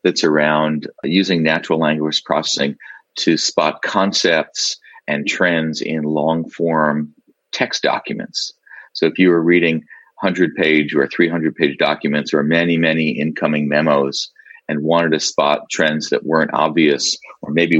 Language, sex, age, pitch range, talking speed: English, male, 40-59, 70-80 Hz, 140 wpm